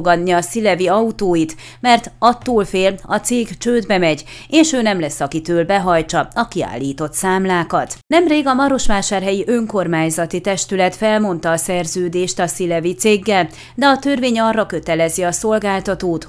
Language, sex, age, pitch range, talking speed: Hungarian, female, 30-49, 175-230 Hz, 140 wpm